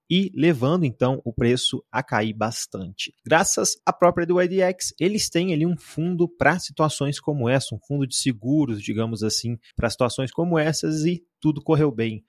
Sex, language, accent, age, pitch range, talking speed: male, Portuguese, Brazilian, 20-39, 125-170 Hz, 175 wpm